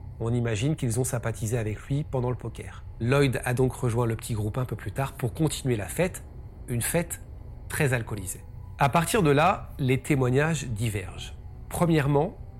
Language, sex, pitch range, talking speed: French, male, 105-135 Hz, 175 wpm